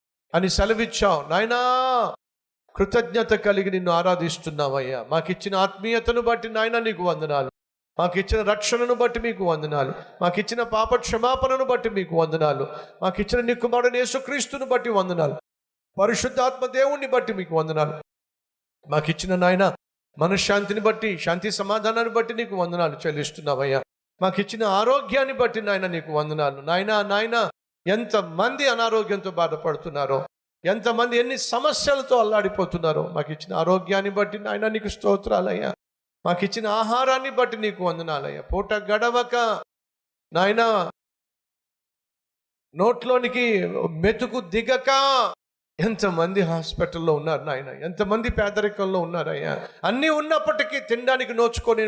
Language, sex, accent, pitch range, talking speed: Telugu, male, native, 170-240 Hz, 110 wpm